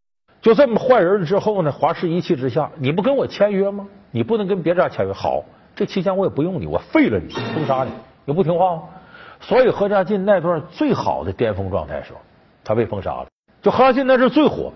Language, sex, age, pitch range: Chinese, male, 50-69, 130-210 Hz